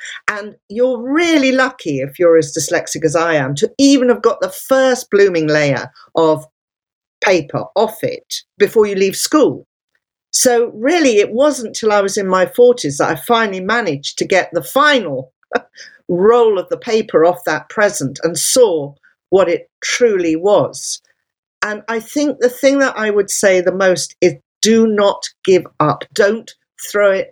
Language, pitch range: English, 160-240 Hz